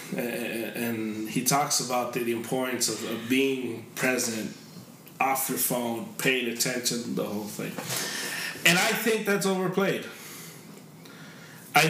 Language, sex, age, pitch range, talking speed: English, male, 30-49, 130-170 Hz, 125 wpm